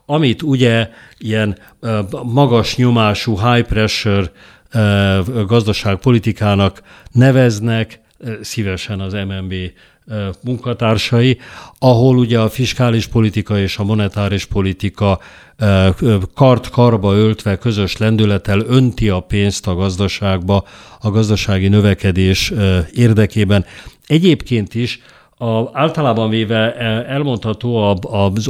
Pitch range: 100-120 Hz